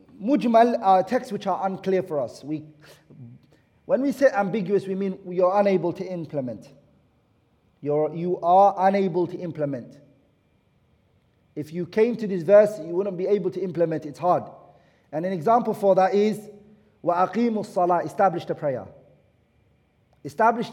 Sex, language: male, English